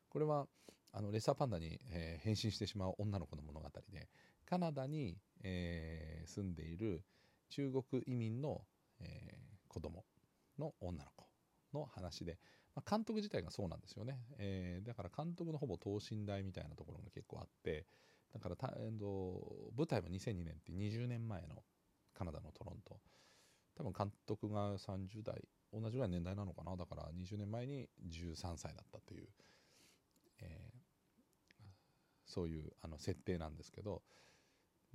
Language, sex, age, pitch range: Japanese, male, 40-59, 85-110 Hz